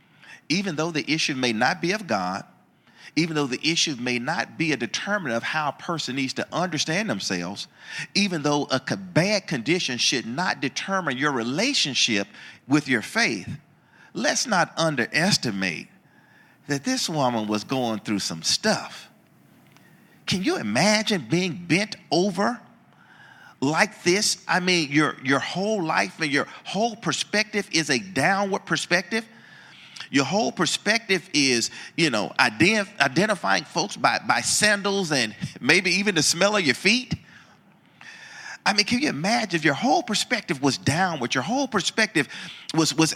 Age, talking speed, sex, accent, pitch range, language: 40-59, 150 wpm, male, American, 135-200 Hz, English